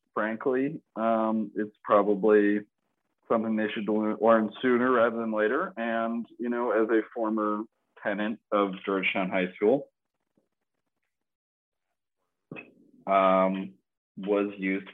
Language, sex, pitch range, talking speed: English, male, 100-155 Hz, 105 wpm